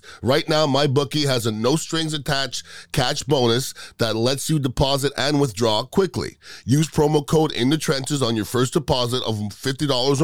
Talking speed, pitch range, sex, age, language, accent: 160 wpm, 120-155 Hz, male, 30-49, English, American